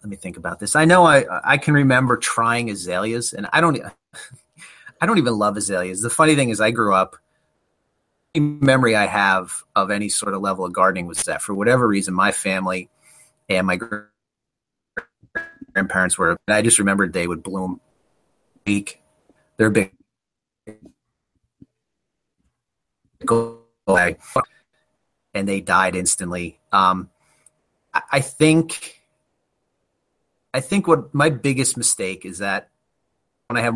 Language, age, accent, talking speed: English, 30-49, American, 135 wpm